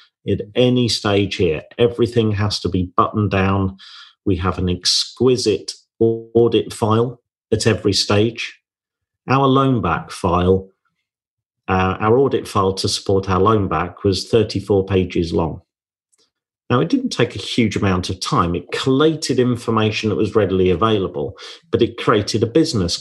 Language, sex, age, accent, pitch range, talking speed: English, male, 40-59, British, 95-120 Hz, 150 wpm